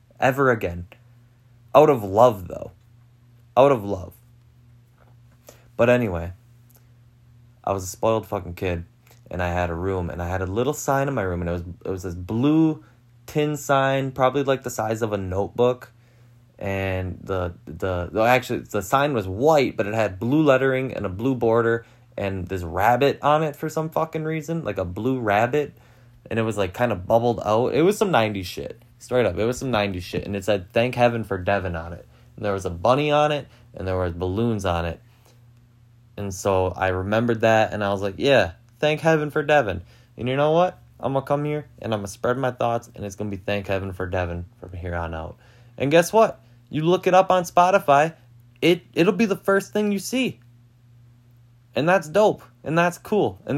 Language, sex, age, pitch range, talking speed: English, male, 20-39, 100-135 Hz, 210 wpm